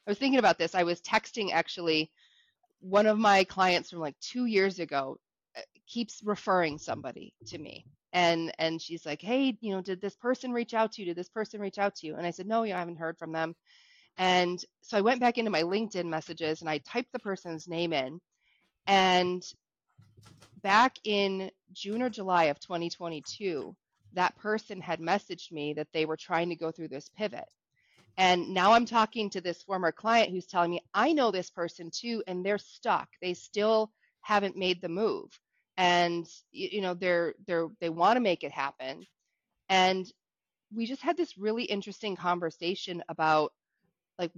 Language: English